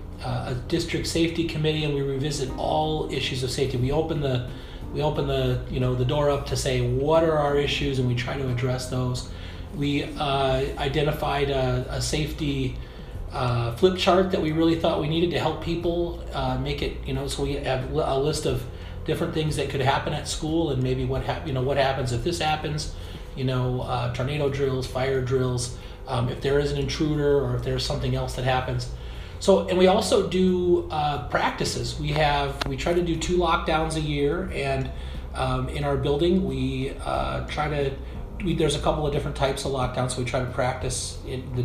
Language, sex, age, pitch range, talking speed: English, male, 30-49, 125-150 Hz, 205 wpm